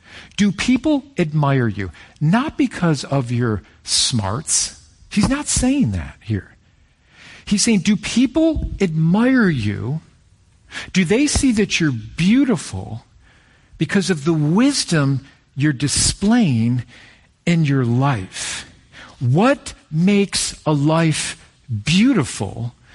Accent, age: American, 50-69